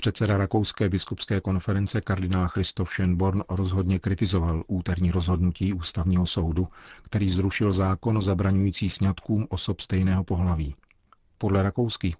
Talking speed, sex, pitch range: 115 wpm, male, 90-100 Hz